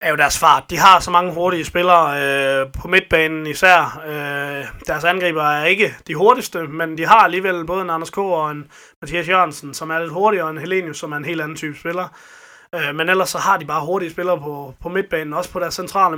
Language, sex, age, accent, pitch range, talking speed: Danish, male, 20-39, native, 145-180 Hz, 235 wpm